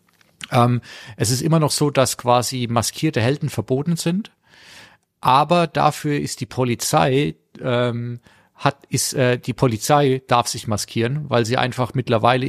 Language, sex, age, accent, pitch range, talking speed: German, male, 40-59, German, 115-140 Hz, 145 wpm